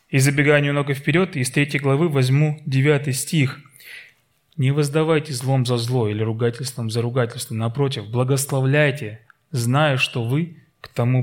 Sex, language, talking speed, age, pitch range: male, Russian, 140 wpm, 20-39, 125-150 Hz